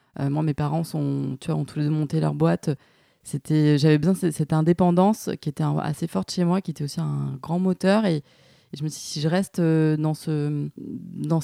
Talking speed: 235 wpm